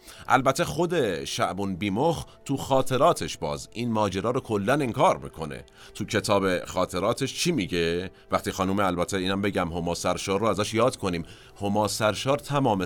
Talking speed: 140 wpm